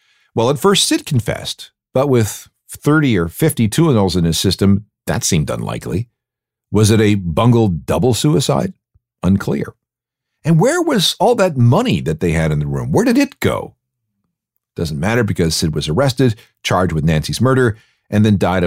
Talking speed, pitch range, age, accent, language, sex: 170 wpm, 95-125 Hz, 50-69, American, English, male